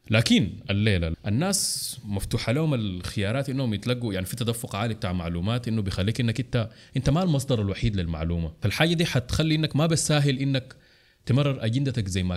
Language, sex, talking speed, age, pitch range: Arabic, male, 170 wpm, 20-39, 105-165 Hz